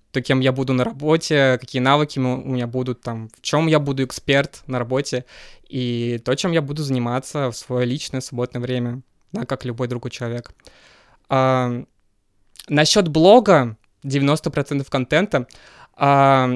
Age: 20-39